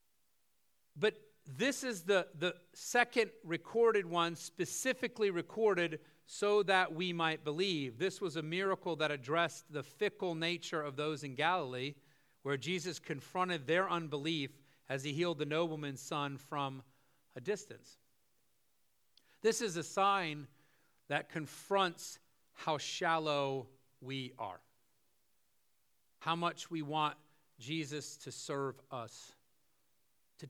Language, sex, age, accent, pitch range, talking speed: English, male, 40-59, American, 135-170 Hz, 120 wpm